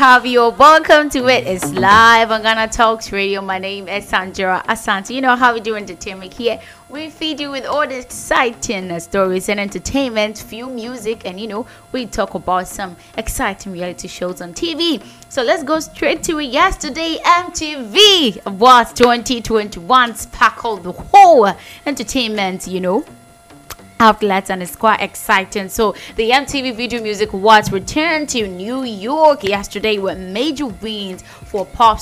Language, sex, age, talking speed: English, female, 20-39, 160 wpm